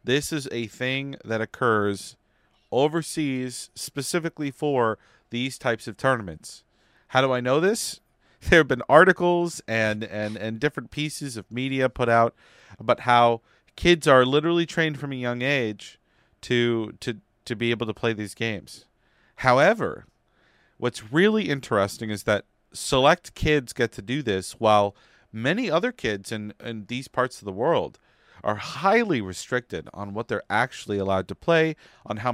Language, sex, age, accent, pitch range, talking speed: English, male, 40-59, American, 110-140 Hz, 160 wpm